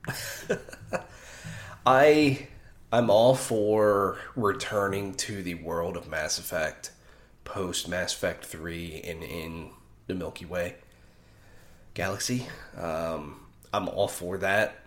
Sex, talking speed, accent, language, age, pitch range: male, 105 wpm, American, English, 30-49, 90-120 Hz